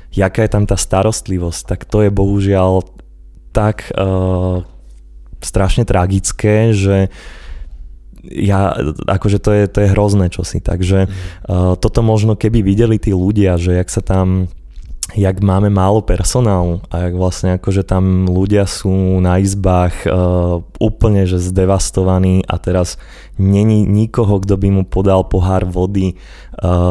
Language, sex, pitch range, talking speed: Slovak, male, 90-100 Hz, 140 wpm